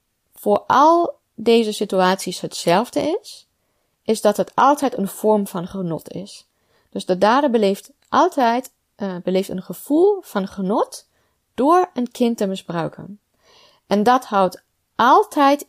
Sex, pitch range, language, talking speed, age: female, 190-245 Hz, Dutch, 135 wpm, 30-49